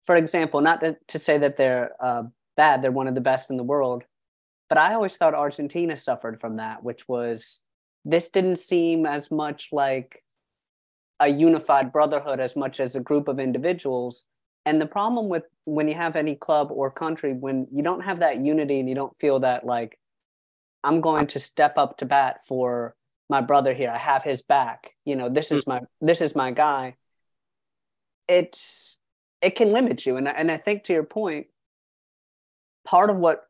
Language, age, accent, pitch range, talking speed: English, 30-49, American, 130-160 Hz, 190 wpm